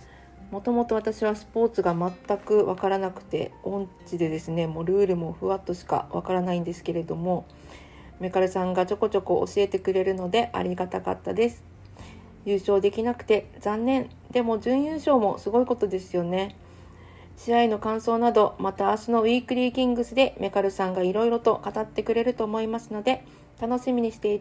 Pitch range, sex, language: 190-255 Hz, female, Japanese